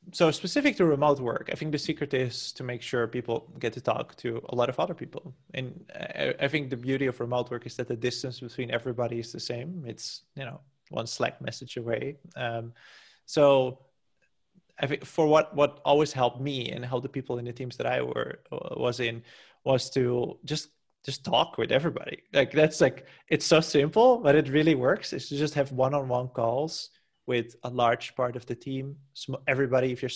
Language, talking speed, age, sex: English, 205 wpm, 20-39, male